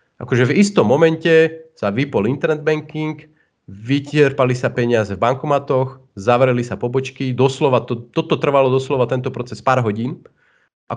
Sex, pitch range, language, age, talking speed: male, 105-130 Hz, Slovak, 30-49, 140 wpm